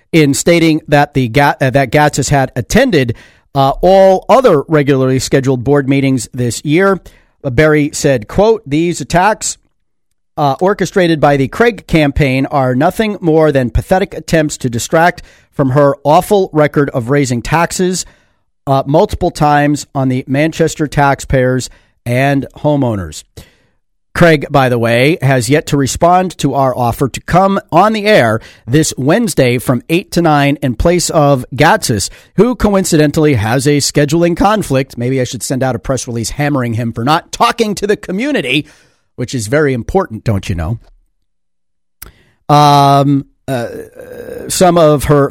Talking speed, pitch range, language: 150 wpm, 130-165 Hz, English